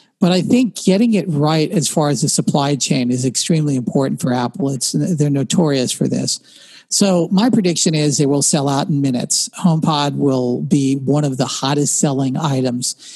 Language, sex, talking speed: English, male, 185 wpm